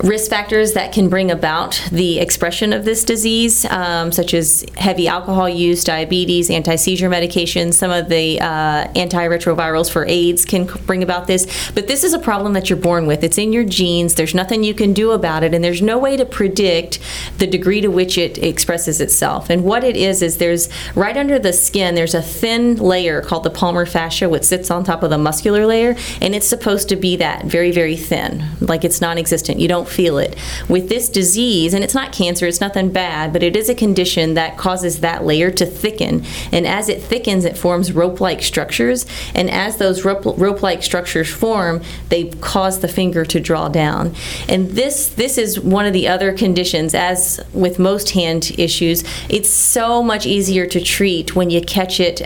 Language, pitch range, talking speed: English, 170-200 Hz, 195 wpm